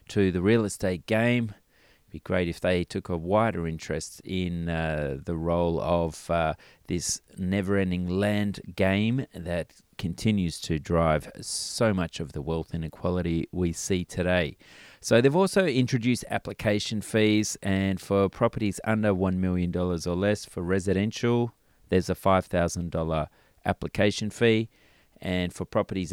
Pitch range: 85-105 Hz